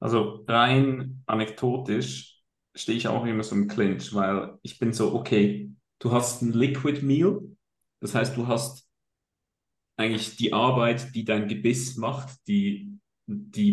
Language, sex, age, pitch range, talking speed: German, male, 40-59, 105-125 Hz, 145 wpm